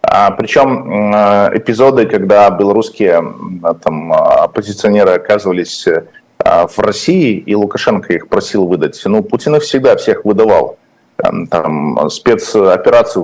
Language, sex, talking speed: Russian, male, 95 wpm